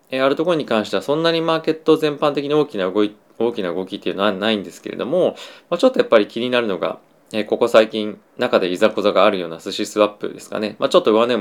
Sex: male